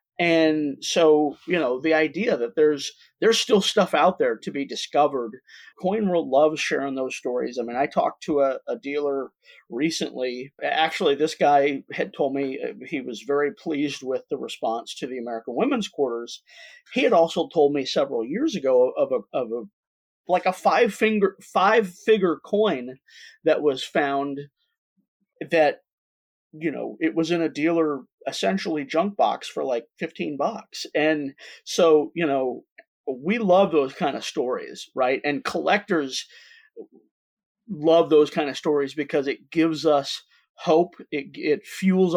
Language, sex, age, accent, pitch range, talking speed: English, male, 40-59, American, 145-195 Hz, 160 wpm